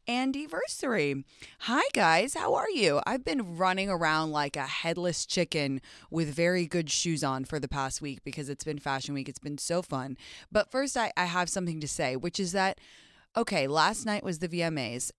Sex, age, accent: female, 20-39, American